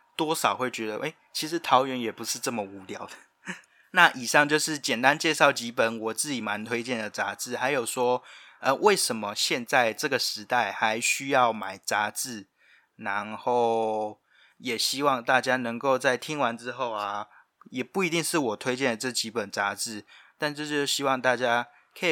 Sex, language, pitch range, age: male, Chinese, 115-140 Hz, 20-39